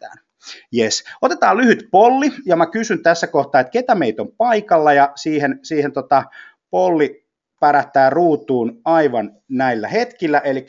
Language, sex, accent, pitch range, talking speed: Finnish, male, native, 115-165 Hz, 140 wpm